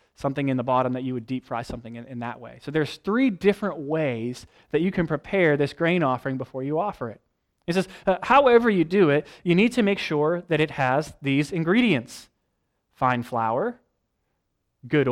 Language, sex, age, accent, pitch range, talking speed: English, male, 20-39, American, 140-205 Hz, 200 wpm